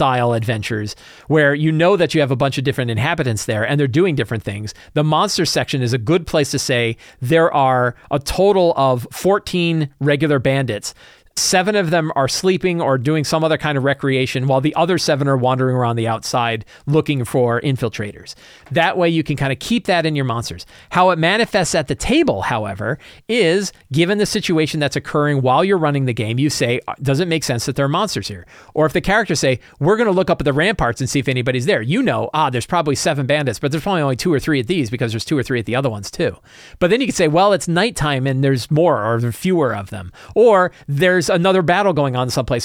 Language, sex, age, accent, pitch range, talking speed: English, male, 40-59, American, 125-165 Hz, 230 wpm